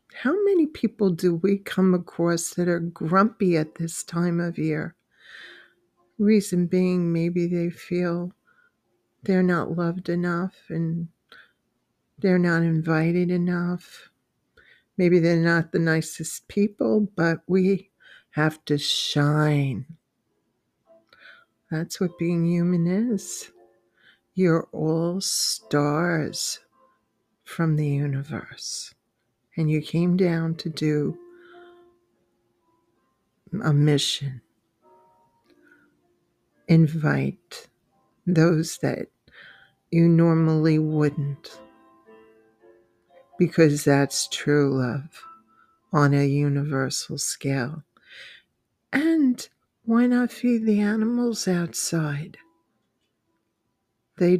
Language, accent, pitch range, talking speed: English, American, 155-195 Hz, 90 wpm